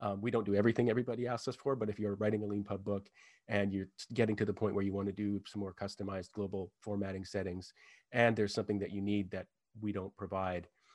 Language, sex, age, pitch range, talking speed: English, male, 30-49, 100-110 Hz, 235 wpm